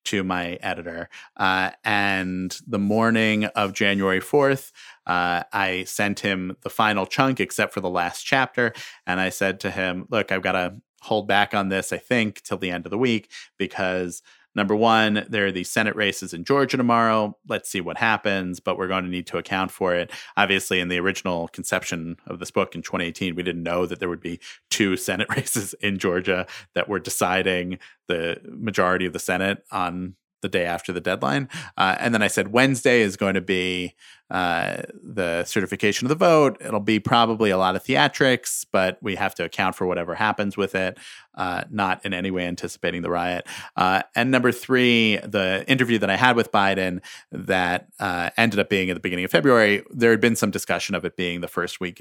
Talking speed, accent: 205 wpm, American